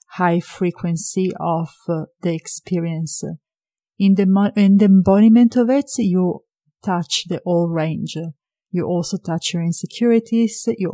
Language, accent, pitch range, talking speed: English, Italian, 170-210 Hz, 135 wpm